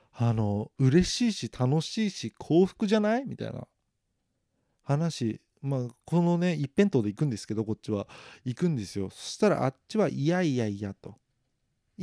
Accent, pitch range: native, 115-175 Hz